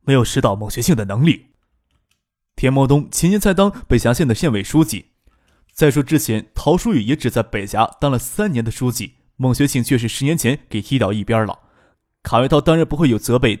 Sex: male